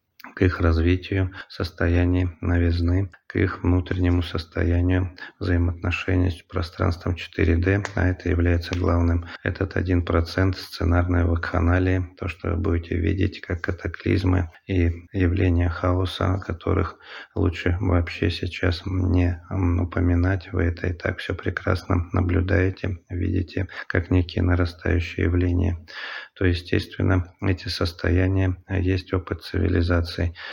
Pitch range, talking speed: 85-95 Hz, 110 wpm